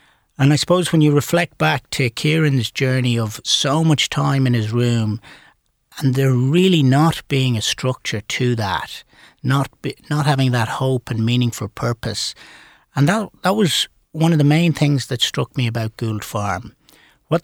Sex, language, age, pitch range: male, English, 60-79, 120-150 Hz